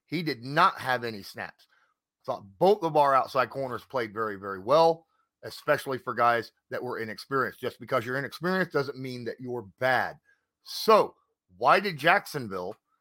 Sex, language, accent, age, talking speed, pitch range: male, English, American, 40-59, 165 wpm, 135-200 Hz